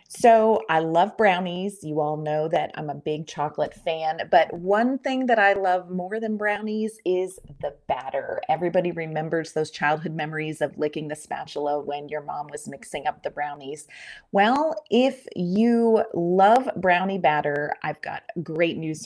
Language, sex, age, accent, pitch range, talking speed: English, female, 30-49, American, 155-210 Hz, 165 wpm